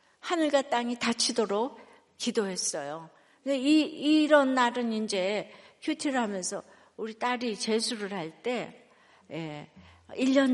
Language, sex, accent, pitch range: Korean, female, native, 200-260 Hz